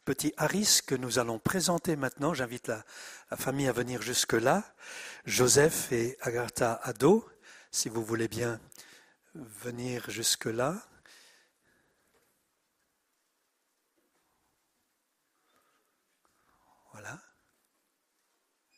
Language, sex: French, male